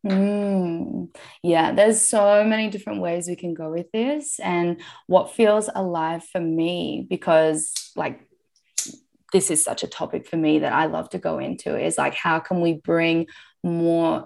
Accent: Australian